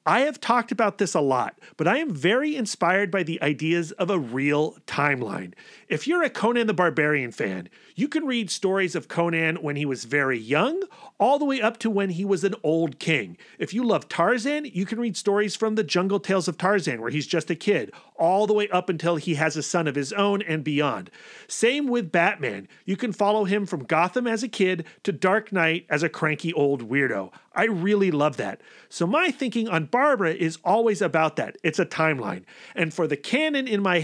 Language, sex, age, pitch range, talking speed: English, male, 40-59, 160-220 Hz, 215 wpm